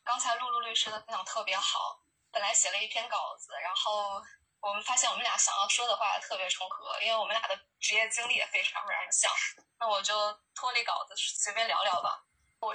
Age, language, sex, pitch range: 10-29, Chinese, female, 200-240 Hz